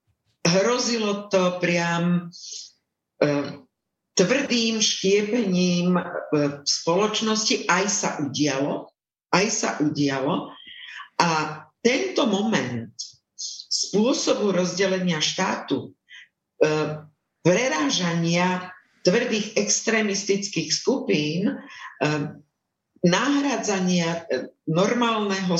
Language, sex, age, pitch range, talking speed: Slovak, female, 50-69, 160-215 Hz, 70 wpm